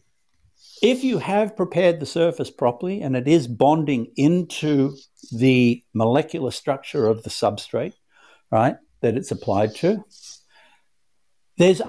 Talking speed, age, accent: 120 wpm, 60-79, Australian